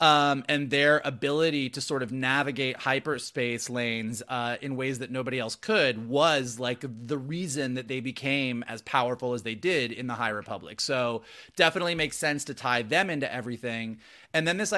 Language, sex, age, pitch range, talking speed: English, male, 30-49, 125-150 Hz, 185 wpm